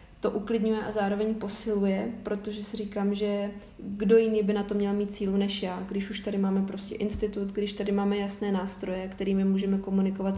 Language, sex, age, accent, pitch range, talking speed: Czech, female, 30-49, native, 190-205 Hz, 190 wpm